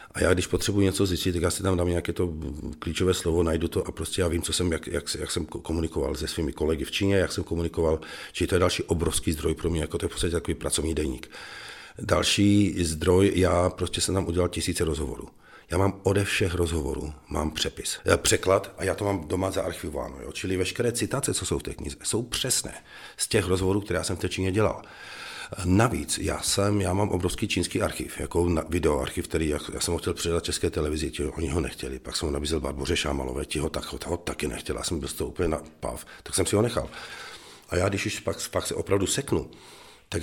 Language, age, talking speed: Czech, 50-69, 225 wpm